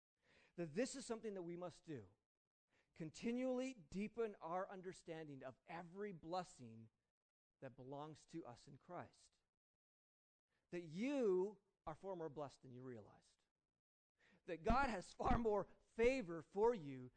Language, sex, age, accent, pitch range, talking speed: English, male, 40-59, American, 155-225 Hz, 135 wpm